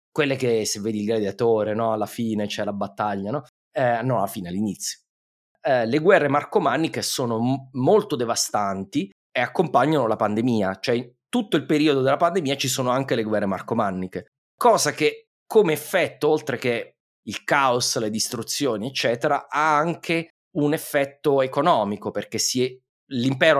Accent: native